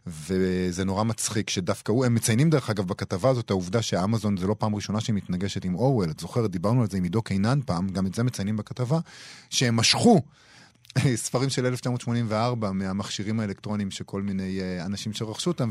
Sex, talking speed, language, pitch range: male, 185 wpm, Hebrew, 100-125 Hz